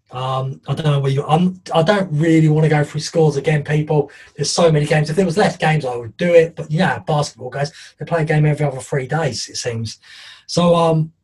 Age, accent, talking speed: 20-39, British, 250 wpm